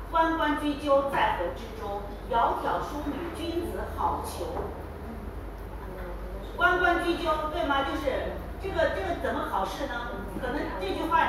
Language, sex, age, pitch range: Chinese, female, 40-59, 275-355 Hz